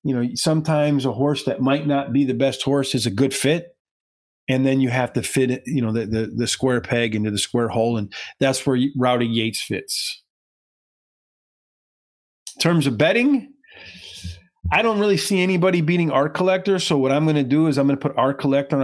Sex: male